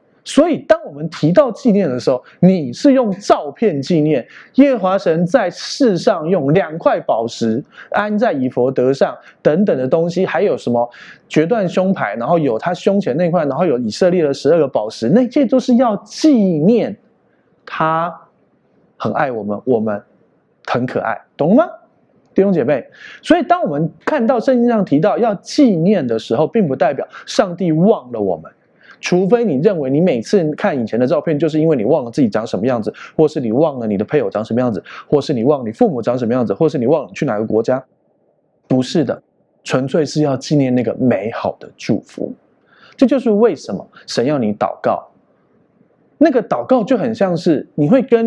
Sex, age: male, 20-39